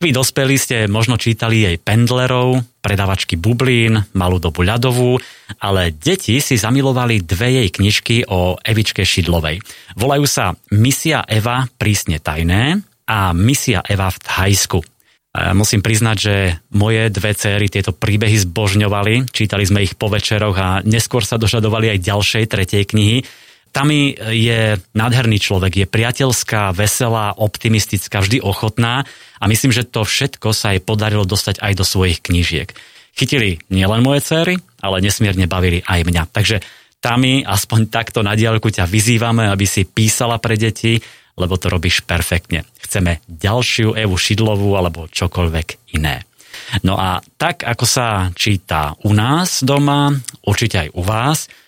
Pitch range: 95-120 Hz